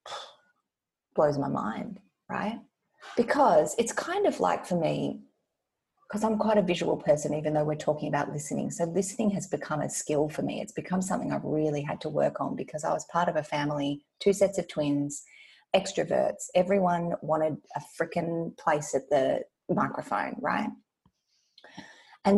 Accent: Australian